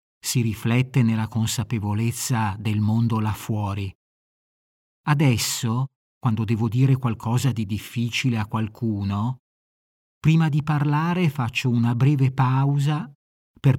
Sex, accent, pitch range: male, native, 110-140 Hz